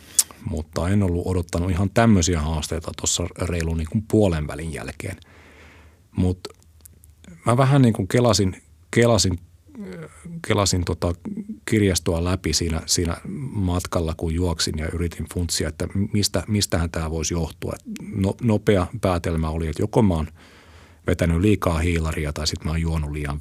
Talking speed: 140 wpm